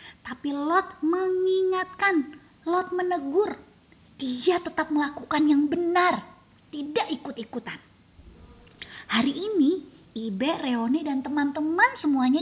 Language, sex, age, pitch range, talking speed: Indonesian, female, 20-39, 265-370 Hz, 90 wpm